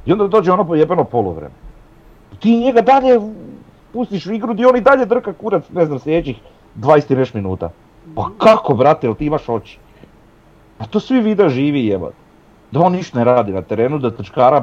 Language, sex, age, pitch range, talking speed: Croatian, male, 40-59, 105-155 Hz, 185 wpm